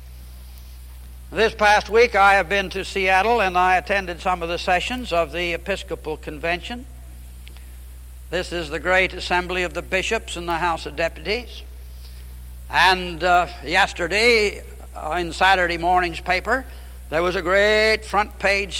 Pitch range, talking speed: 160-210 Hz, 145 wpm